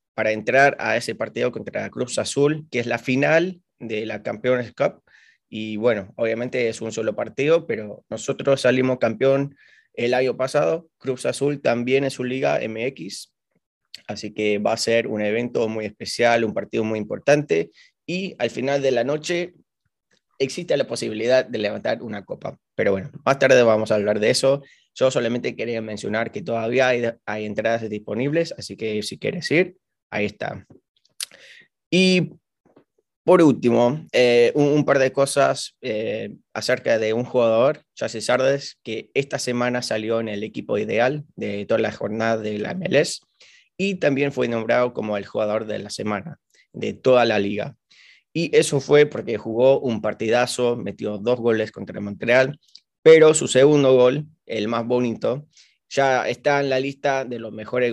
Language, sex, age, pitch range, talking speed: Spanish, male, 20-39, 110-140 Hz, 165 wpm